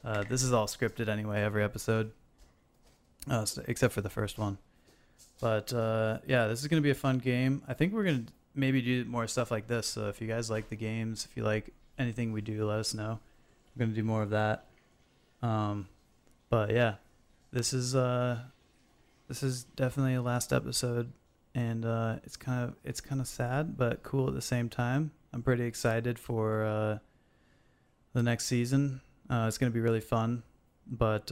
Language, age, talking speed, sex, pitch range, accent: English, 20-39, 190 wpm, male, 105-125 Hz, American